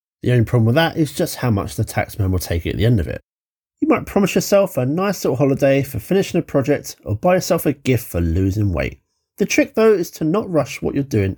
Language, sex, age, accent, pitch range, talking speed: English, male, 30-49, British, 110-165 Hz, 255 wpm